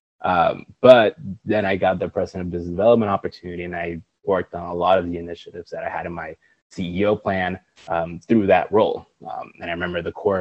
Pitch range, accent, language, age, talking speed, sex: 85-105 Hz, American, English, 20-39, 215 wpm, male